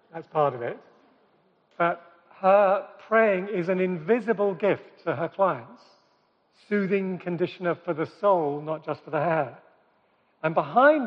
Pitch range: 165-210 Hz